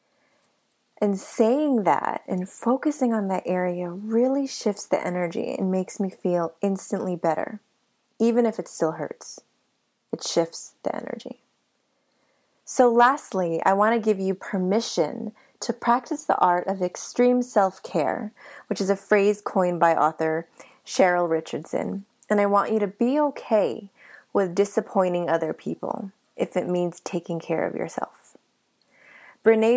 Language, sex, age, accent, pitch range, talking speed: English, female, 20-39, American, 180-235 Hz, 140 wpm